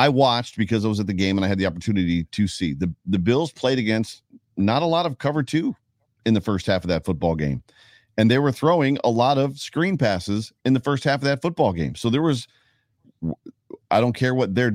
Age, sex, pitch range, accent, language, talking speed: 40-59, male, 100-130 Hz, American, English, 240 wpm